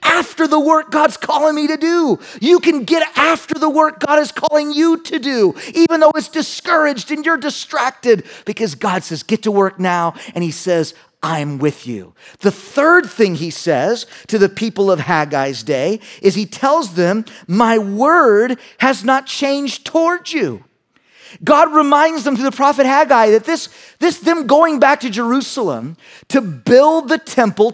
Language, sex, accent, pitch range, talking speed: English, male, American, 200-295 Hz, 175 wpm